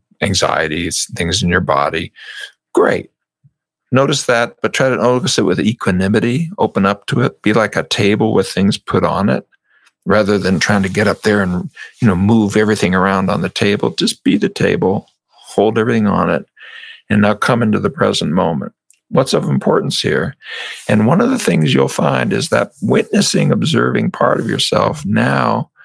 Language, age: English, 50-69